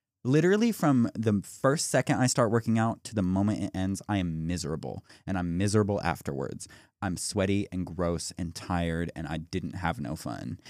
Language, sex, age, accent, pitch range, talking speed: English, male, 20-39, American, 95-115 Hz, 185 wpm